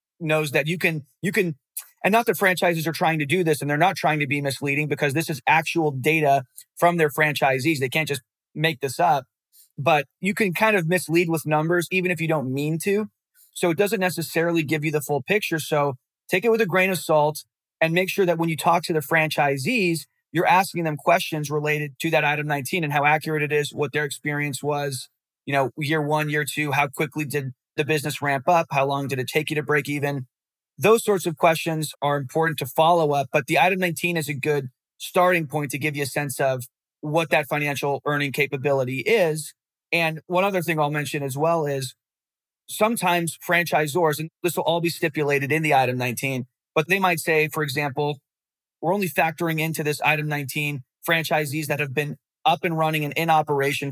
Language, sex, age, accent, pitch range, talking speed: English, male, 30-49, American, 145-170 Hz, 215 wpm